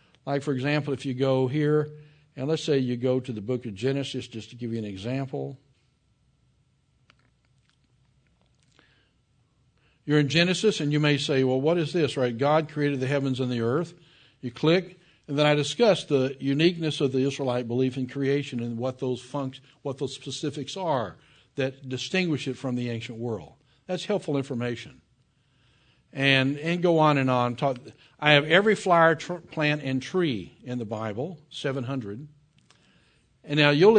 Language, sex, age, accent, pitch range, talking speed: English, male, 60-79, American, 130-150 Hz, 170 wpm